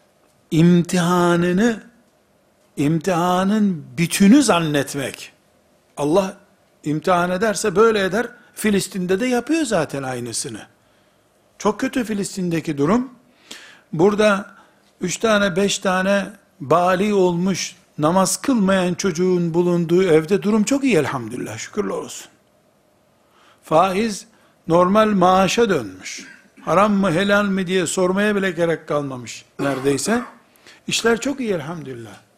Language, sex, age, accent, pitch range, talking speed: Turkish, male, 60-79, native, 155-210 Hz, 100 wpm